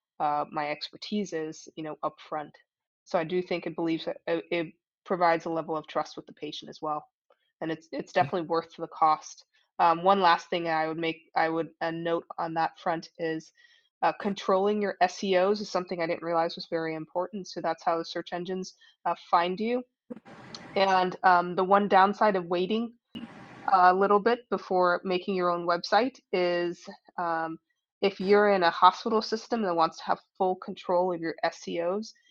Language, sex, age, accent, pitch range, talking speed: English, female, 20-39, American, 165-195 Hz, 185 wpm